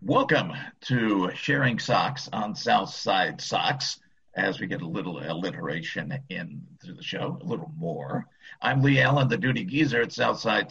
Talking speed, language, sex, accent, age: 150 wpm, English, male, American, 50-69